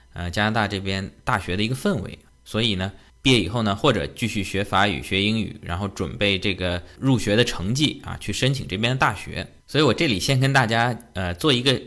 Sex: male